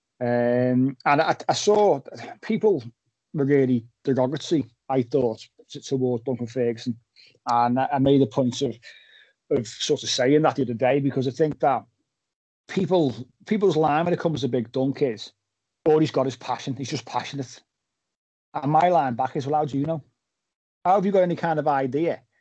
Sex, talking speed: male, 185 wpm